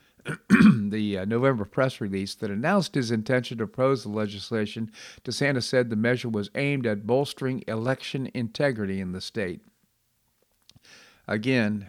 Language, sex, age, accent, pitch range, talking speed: English, male, 50-69, American, 100-125 Hz, 135 wpm